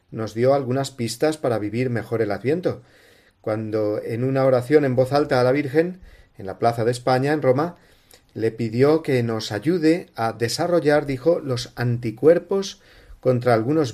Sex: male